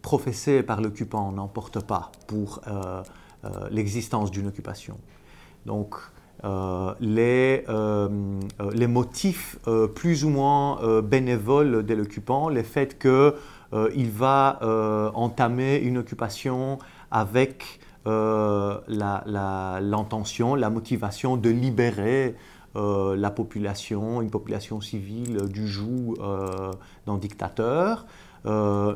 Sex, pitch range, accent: male, 105-130 Hz, French